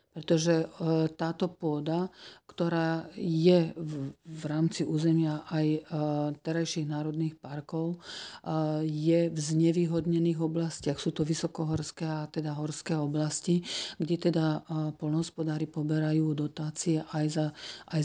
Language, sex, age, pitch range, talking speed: Slovak, female, 40-59, 155-175 Hz, 100 wpm